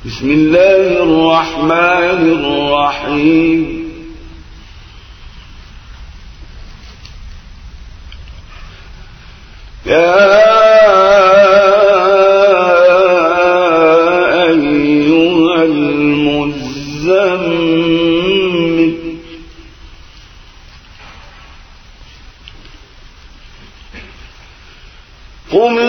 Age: 40-59